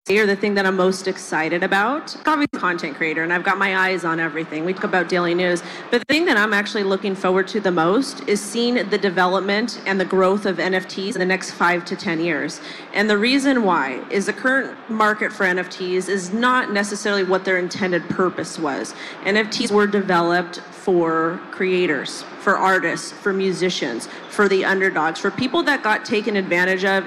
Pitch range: 175-205 Hz